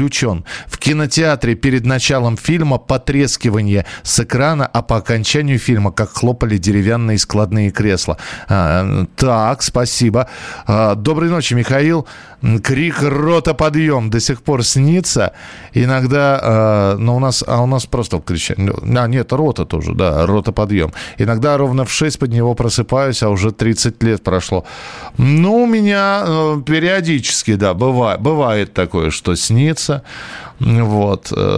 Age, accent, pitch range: 40-59, native, 110-140 Hz